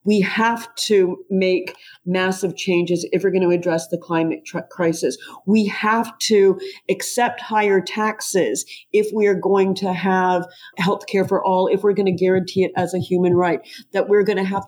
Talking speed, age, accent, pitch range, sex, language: 190 wpm, 50-69, American, 190-215 Hz, female, English